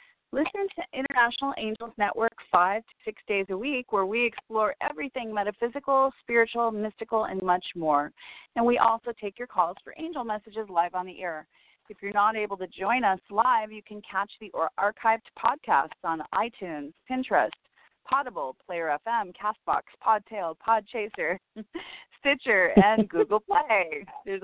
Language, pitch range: English, 190-230 Hz